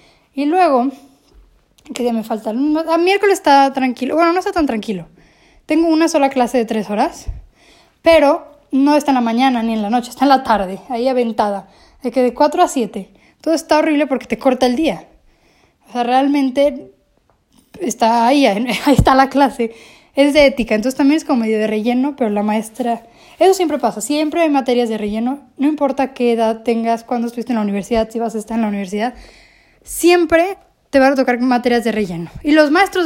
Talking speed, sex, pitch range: 200 wpm, female, 230-290 Hz